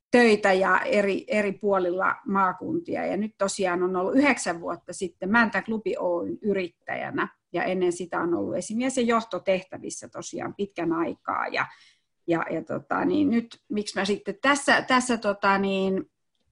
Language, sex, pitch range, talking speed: Finnish, female, 180-235 Hz, 145 wpm